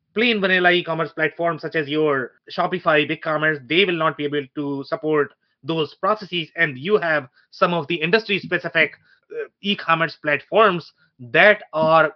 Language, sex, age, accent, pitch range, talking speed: English, male, 30-49, Indian, 145-175 Hz, 145 wpm